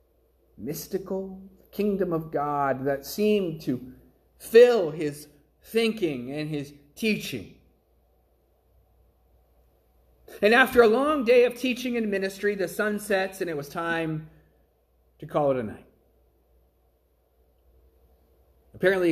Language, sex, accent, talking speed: English, male, American, 110 wpm